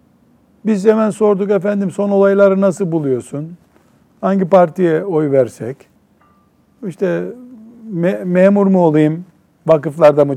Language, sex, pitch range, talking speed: Turkish, male, 140-195 Hz, 110 wpm